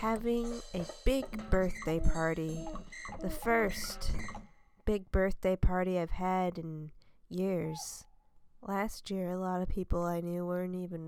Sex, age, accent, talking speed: female, 20-39, American, 130 wpm